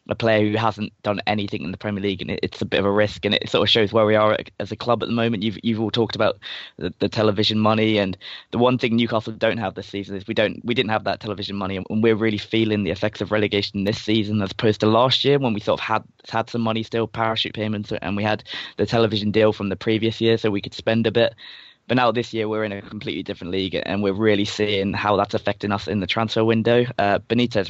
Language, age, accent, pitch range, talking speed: English, 20-39, British, 100-115 Hz, 270 wpm